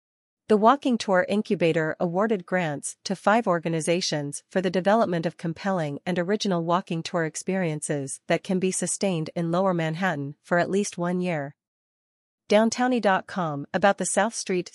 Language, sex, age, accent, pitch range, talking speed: English, female, 40-59, American, 165-200 Hz, 145 wpm